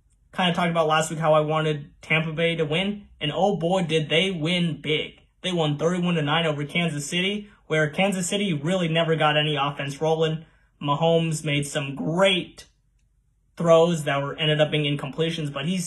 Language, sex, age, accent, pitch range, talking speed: English, male, 20-39, American, 145-180 Hz, 180 wpm